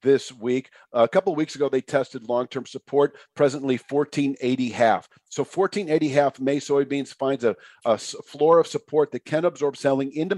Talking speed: 170 wpm